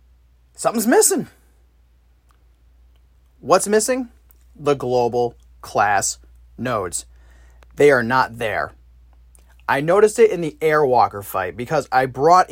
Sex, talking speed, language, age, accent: male, 105 wpm, English, 30-49, American